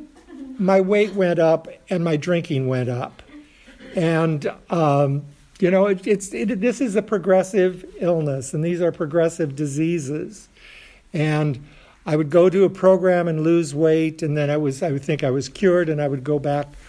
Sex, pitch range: male, 140-175 Hz